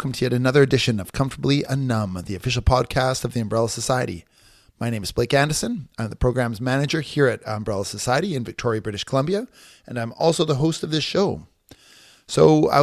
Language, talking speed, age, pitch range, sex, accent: English, 195 wpm, 30-49, 105-135 Hz, male, American